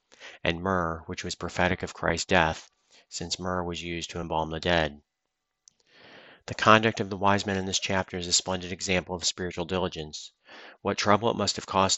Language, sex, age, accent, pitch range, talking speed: English, male, 40-59, American, 85-95 Hz, 190 wpm